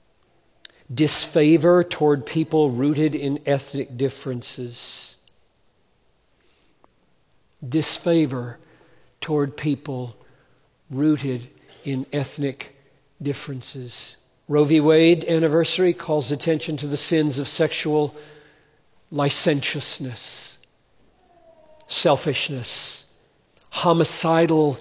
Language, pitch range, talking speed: English, 140-165 Hz, 70 wpm